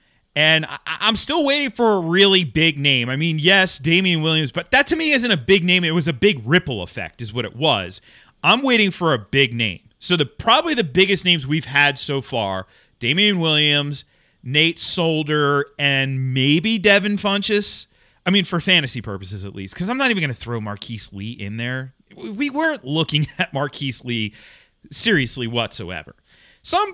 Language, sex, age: English, male, 30-49